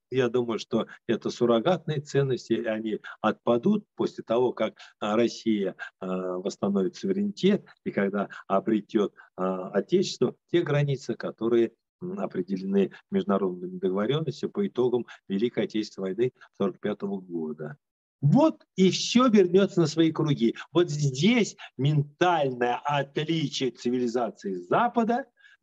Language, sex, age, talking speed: Russian, male, 50-69, 105 wpm